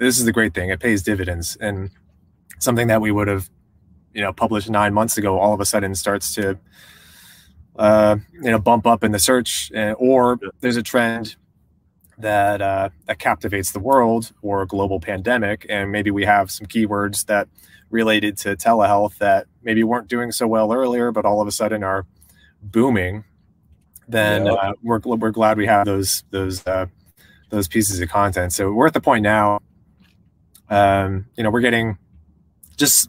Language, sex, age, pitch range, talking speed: English, male, 20-39, 95-110 Hz, 180 wpm